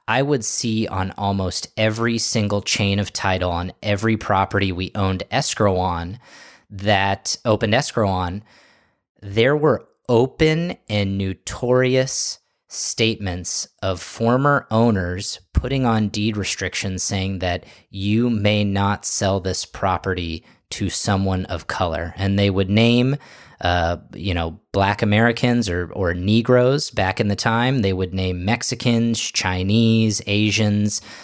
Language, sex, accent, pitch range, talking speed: English, male, American, 95-110 Hz, 130 wpm